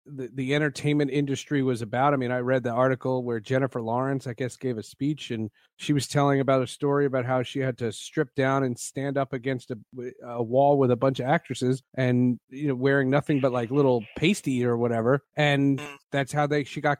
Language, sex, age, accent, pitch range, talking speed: English, male, 40-59, American, 125-145 Hz, 220 wpm